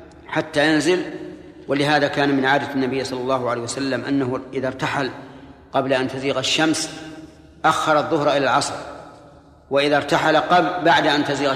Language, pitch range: Arabic, 135-160 Hz